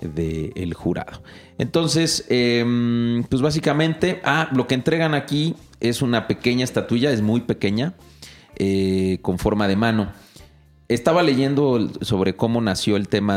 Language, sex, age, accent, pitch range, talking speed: Spanish, male, 40-59, Mexican, 90-120 Hz, 140 wpm